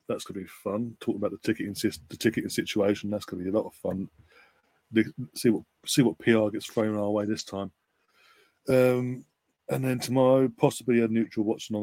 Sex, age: male, 30-49